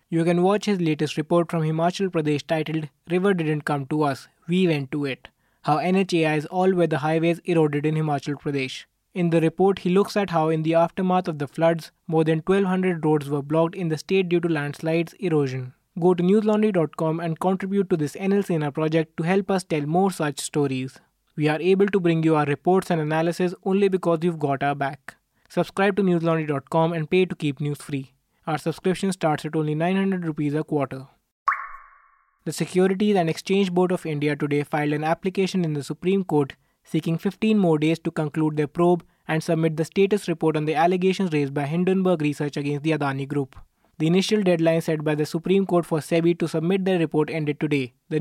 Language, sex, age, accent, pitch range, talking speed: English, male, 20-39, Indian, 150-180 Hz, 200 wpm